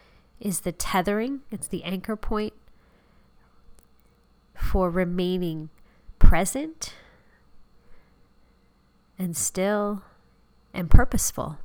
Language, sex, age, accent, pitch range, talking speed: English, female, 30-49, American, 165-195 Hz, 70 wpm